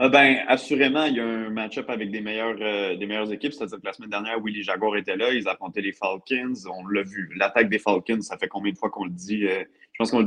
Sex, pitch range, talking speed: male, 110-130 Hz, 275 wpm